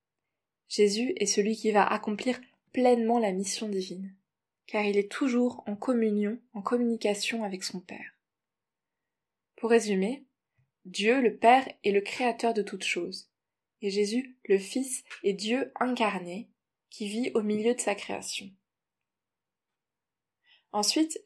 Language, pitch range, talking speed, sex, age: French, 200-245 Hz, 135 wpm, female, 20-39